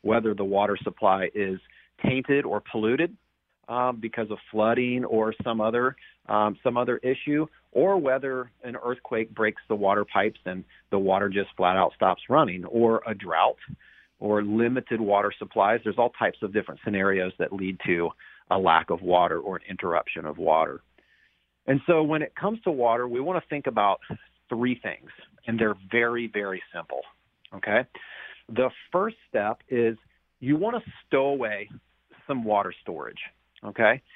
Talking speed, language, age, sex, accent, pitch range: 160 wpm, English, 40-59, male, American, 105-140 Hz